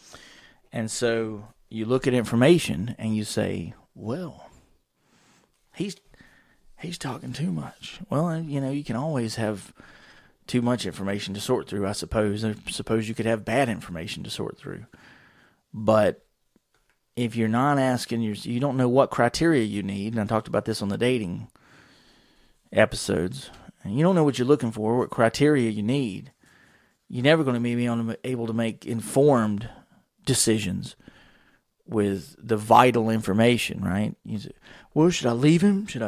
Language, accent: English, American